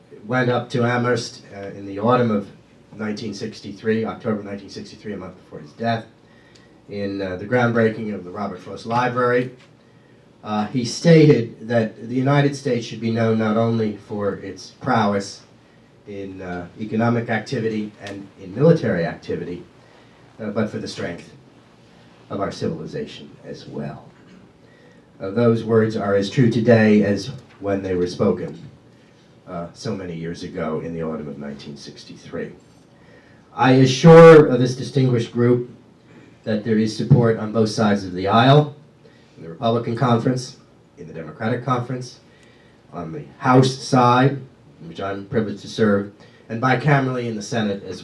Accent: American